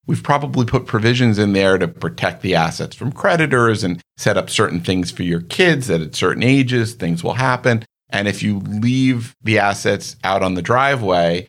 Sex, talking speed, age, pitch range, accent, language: male, 195 wpm, 50-69, 85-115 Hz, American, English